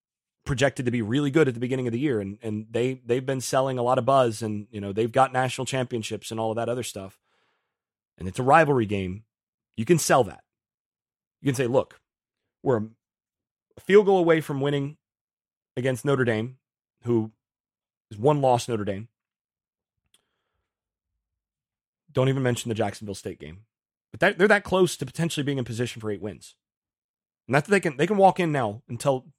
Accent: American